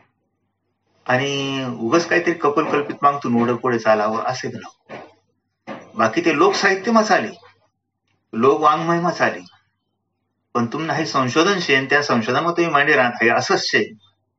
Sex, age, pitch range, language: male, 30-49, 100-125 Hz, Marathi